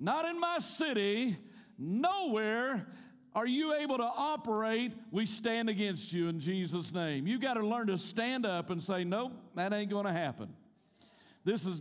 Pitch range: 200-250 Hz